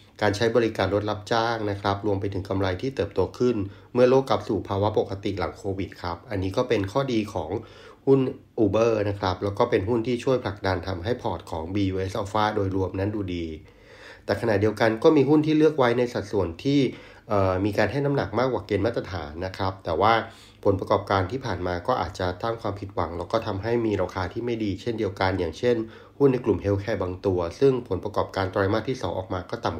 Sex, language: male, Thai